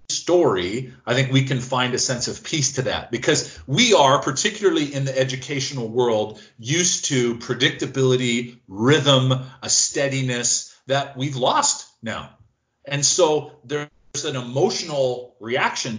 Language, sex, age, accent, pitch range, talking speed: English, male, 40-59, American, 125-150 Hz, 135 wpm